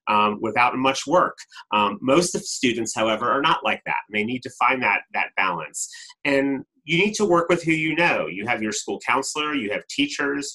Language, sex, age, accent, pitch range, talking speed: English, male, 30-49, American, 110-145 Hz, 215 wpm